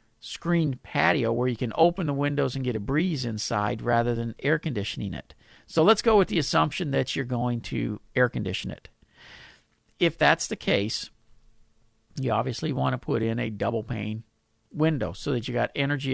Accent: American